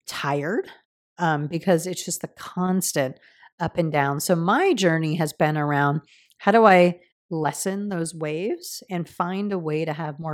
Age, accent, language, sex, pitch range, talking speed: 30-49, American, English, female, 155-205 Hz, 170 wpm